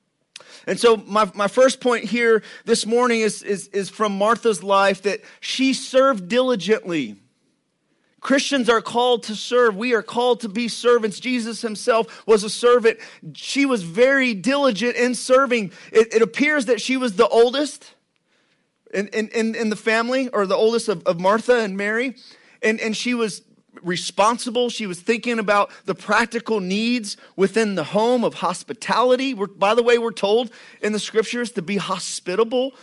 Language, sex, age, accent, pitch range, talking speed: English, male, 30-49, American, 200-245 Hz, 165 wpm